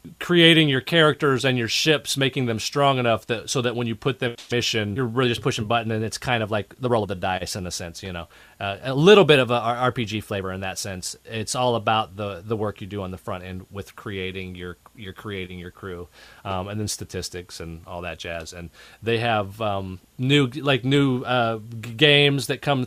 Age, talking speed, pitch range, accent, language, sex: 30-49, 235 wpm, 105-135 Hz, American, English, male